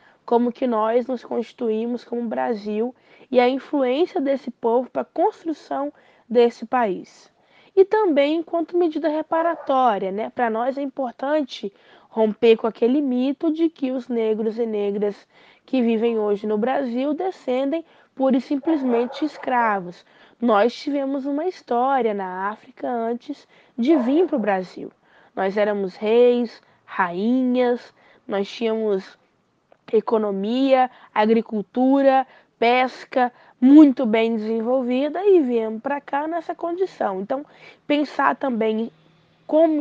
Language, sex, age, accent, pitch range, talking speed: Portuguese, female, 20-39, Brazilian, 225-295 Hz, 120 wpm